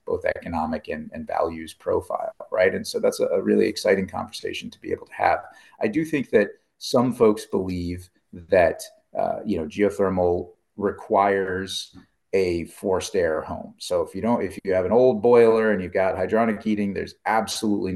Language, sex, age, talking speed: English, male, 30-49, 180 wpm